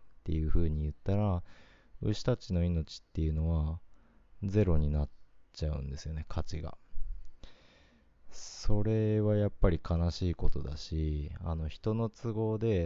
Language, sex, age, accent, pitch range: Japanese, male, 20-39, native, 75-90 Hz